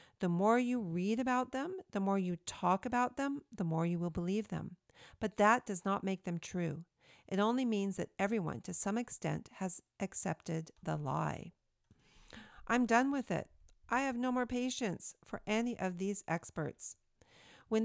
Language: English